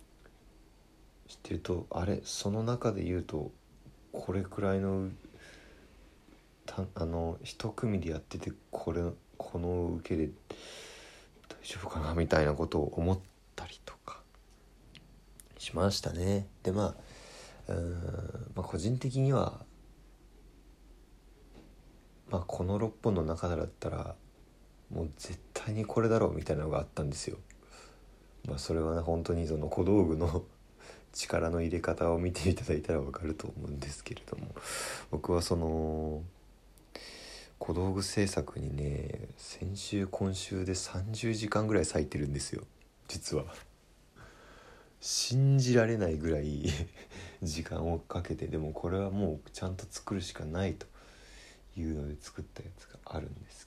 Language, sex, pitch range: Japanese, male, 80-100 Hz